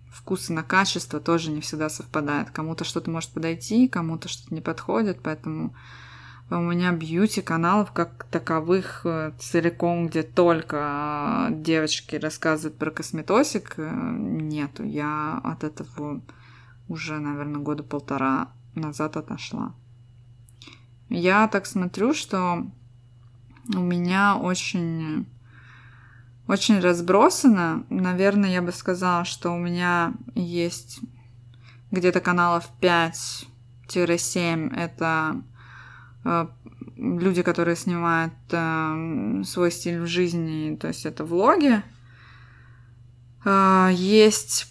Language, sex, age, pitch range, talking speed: Russian, female, 20-39, 130-180 Hz, 95 wpm